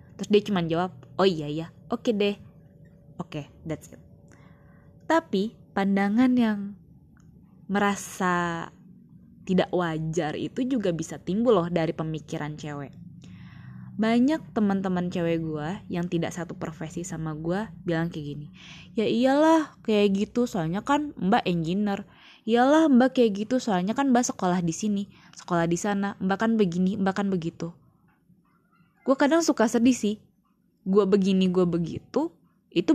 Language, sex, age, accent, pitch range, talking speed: Indonesian, female, 20-39, native, 170-210 Hz, 140 wpm